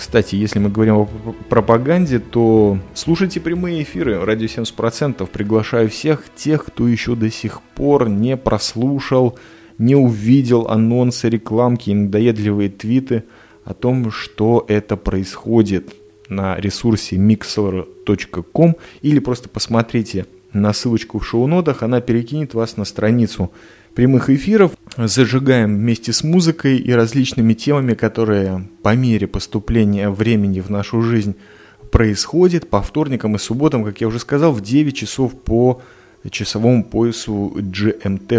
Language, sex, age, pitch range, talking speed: Russian, male, 20-39, 105-125 Hz, 125 wpm